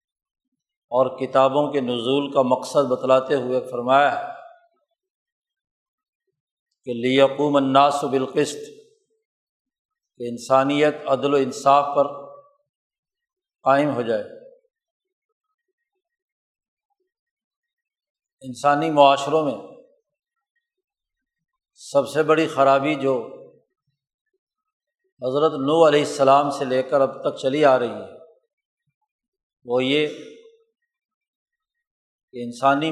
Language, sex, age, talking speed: Urdu, male, 50-69, 85 wpm